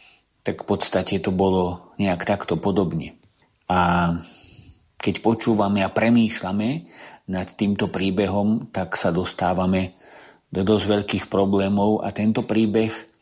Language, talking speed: Slovak, 120 wpm